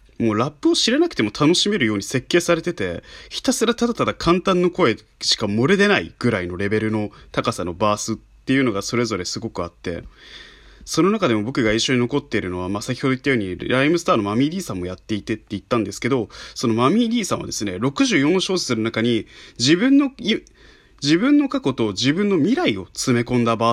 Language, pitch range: Japanese, 110-170 Hz